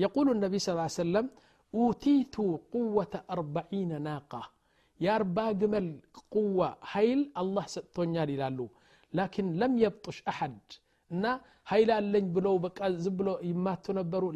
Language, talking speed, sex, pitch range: Amharic, 115 wpm, male, 165-220 Hz